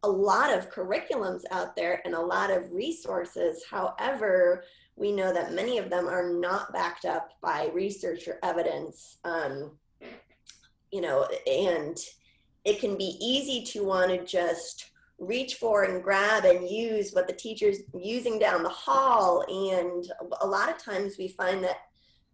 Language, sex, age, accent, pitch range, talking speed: English, female, 20-39, American, 180-255 Hz, 160 wpm